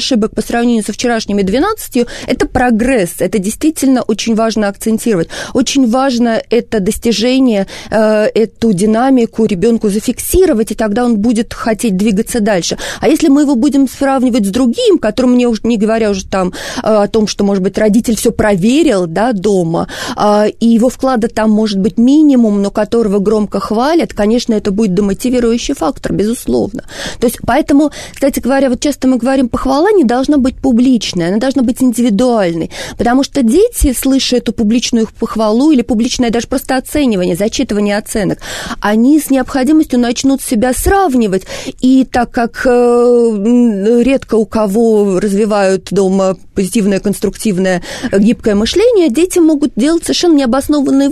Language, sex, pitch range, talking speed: Russian, female, 215-265 Hz, 145 wpm